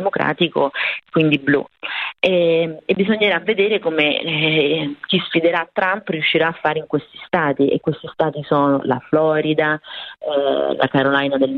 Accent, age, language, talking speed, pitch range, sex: native, 30-49, Italian, 140 wpm, 145-170 Hz, female